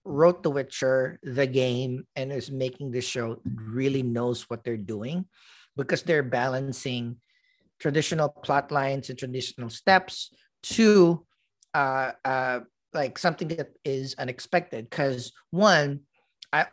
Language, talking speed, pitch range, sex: English, 125 wpm, 120-155 Hz, male